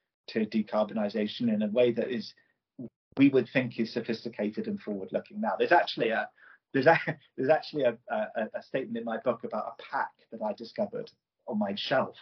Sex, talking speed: male, 185 wpm